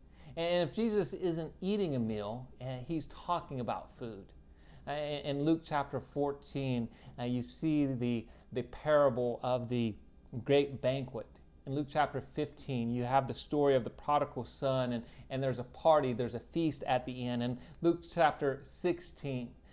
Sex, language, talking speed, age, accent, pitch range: male, English, 155 wpm, 30-49, American, 120-150 Hz